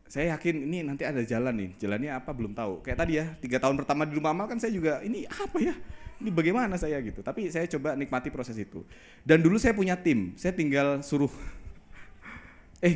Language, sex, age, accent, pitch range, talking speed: Indonesian, male, 20-39, native, 110-160 Hz, 210 wpm